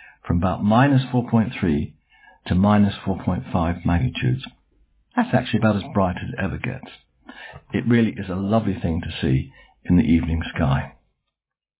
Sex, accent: male, British